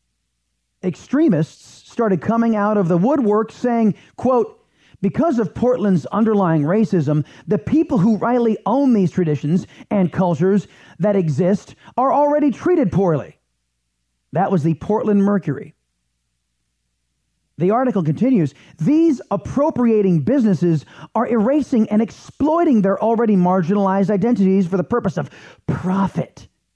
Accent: American